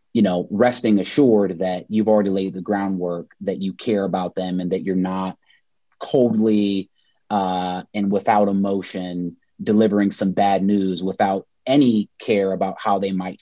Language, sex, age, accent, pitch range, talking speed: English, male, 30-49, American, 95-120 Hz, 155 wpm